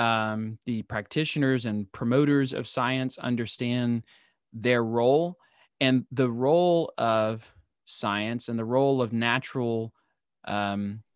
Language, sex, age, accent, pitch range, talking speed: English, male, 30-49, American, 110-140 Hz, 115 wpm